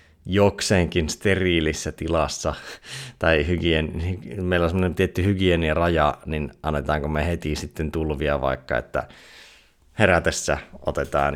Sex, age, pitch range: male, 30-49, 75-90 Hz